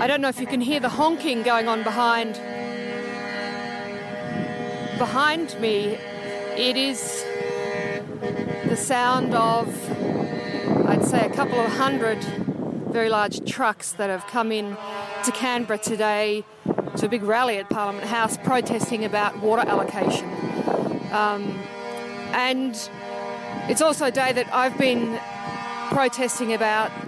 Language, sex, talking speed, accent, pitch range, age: English, female, 125 wpm, Australian, 195-235 Hz, 50-69